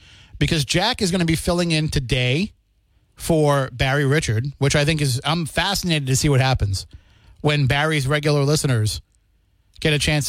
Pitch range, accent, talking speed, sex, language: 125-150 Hz, American, 170 wpm, male, English